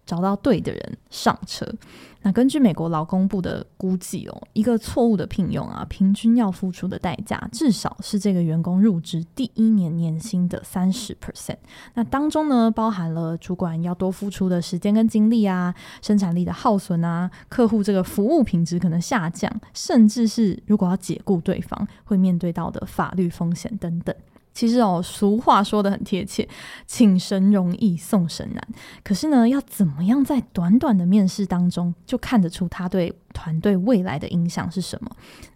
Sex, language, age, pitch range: female, Chinese, 20-39, 180-225 Hz